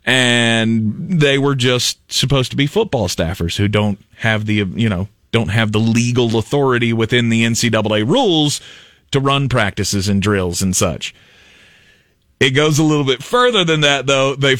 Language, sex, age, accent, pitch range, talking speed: English, male, 30-49, American, 105-160 Hz, 170 wpm